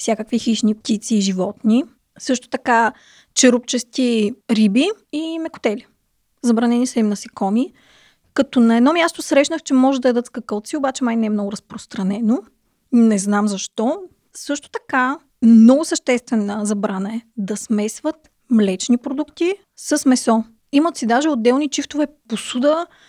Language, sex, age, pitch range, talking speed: Bulgarian, female, 30-49, 225-285 Hz, 135 wpm